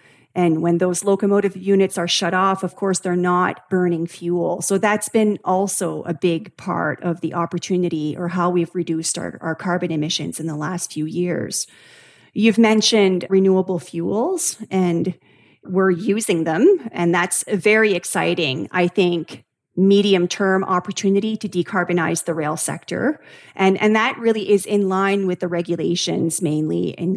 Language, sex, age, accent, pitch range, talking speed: English, female, 40-59, American, 170-195 Hz, 155 wpm